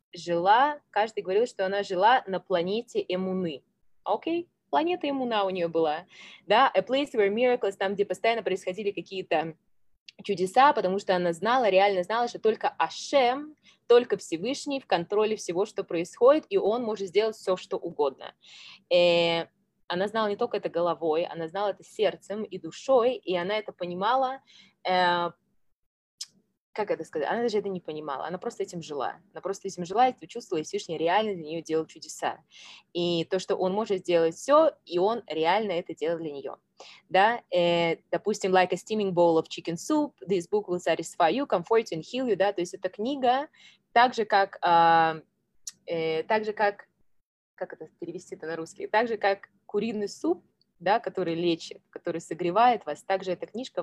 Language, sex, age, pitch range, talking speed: Russian, female, 20-39, 170-220 Hz, 170 wpm